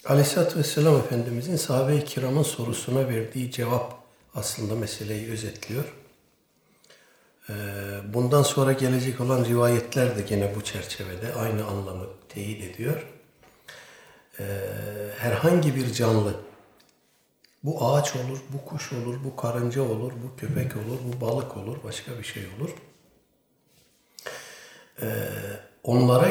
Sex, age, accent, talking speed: male, 60-79, native, 105 wpm